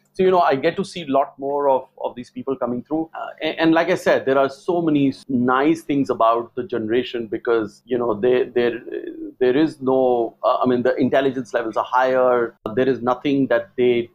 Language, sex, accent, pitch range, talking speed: English, male, Indian, 120-145 Hz, 215 wpm